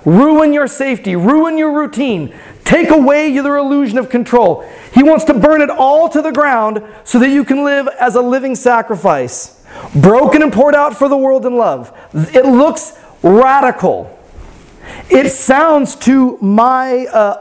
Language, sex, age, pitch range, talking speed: English, male, 30-49, 185-255 Hz, 160 wpm